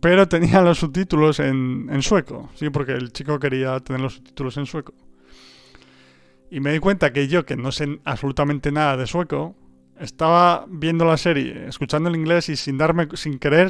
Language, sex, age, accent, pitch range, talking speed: Spanish, male, 30-49, Spanish, 130-150 Hz, 185 wpm